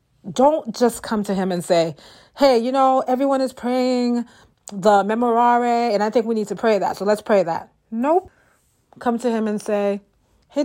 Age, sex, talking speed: 40-59, female, 190 wpm